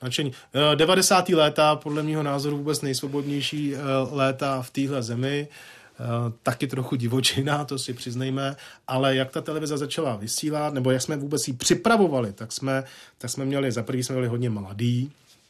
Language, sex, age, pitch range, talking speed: Czech, male, 40-59, 115-130 Hz, 160 wpm